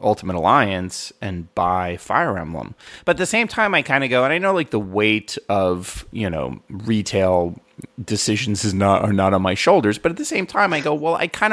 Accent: American